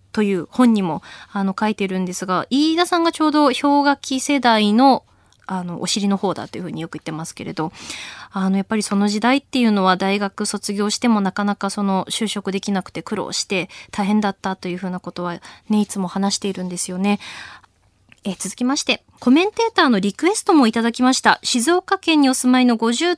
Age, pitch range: 20-39, 195-285 Hz